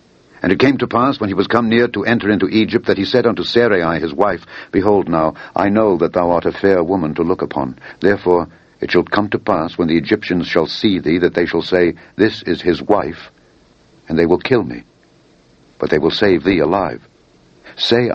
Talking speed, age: 220 wpm, 60-79